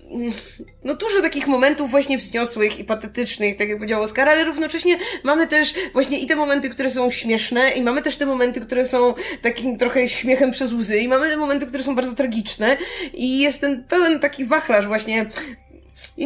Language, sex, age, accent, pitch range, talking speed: Polish, female, 20-39, native, 220-295 Hz, 190 wpm